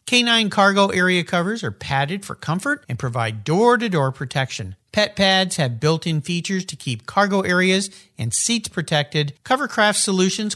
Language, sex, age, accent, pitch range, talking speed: English, male, 50-69, American, 140-205 Hz, 150 wpm